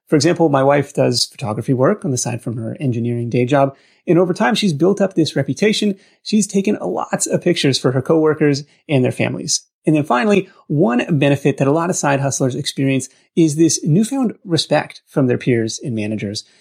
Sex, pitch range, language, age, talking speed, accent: male, 135-180 Hz, English, 30-49, 200 wpm, American